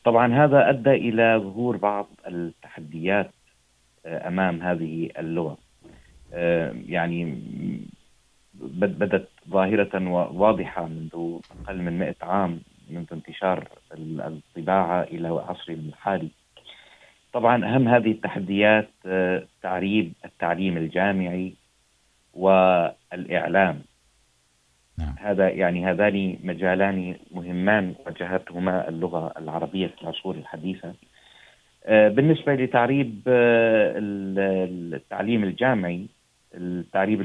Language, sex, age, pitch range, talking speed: Urdu, male, 30-49, 85-100 Hz, 80 wpm